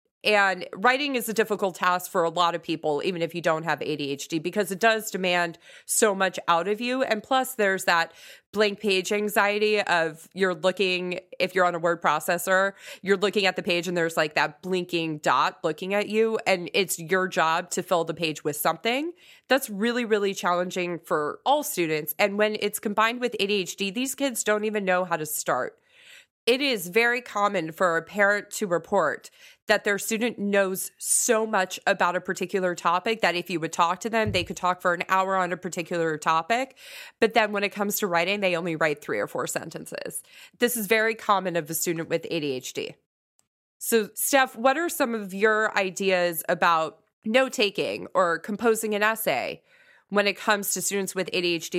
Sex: female